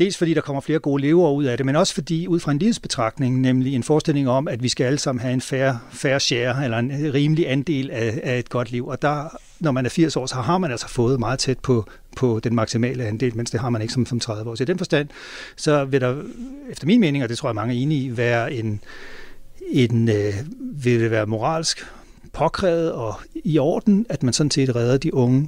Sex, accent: male, native